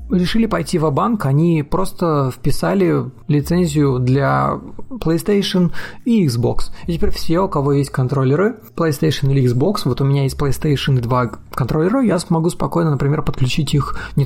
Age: 30-49